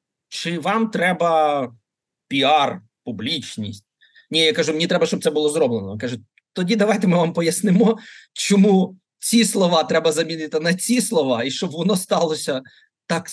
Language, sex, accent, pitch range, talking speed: Ukrainian, male, native, 150-205 Hz, 150 wpm